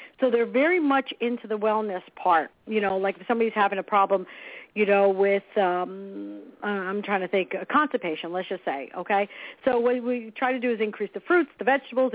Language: English